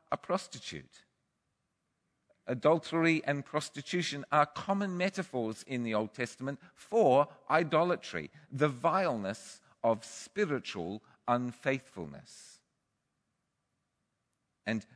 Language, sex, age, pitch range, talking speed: English, male, 50-69, 135-165 Hz, 80 wpm